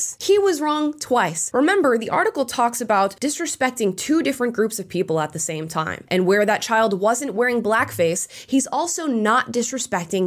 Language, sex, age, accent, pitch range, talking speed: English, female, 20-39, American, 185-270 Hz, 175 wpm